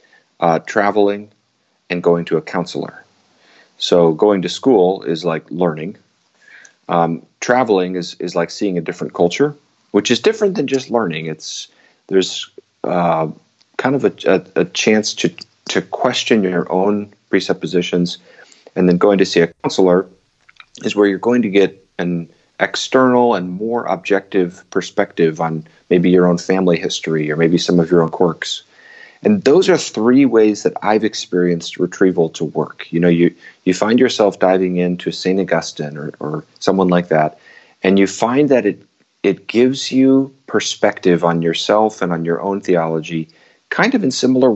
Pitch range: 85-105 Hz